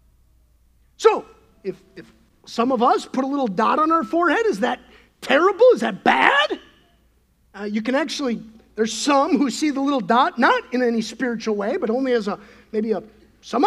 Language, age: English, 50-69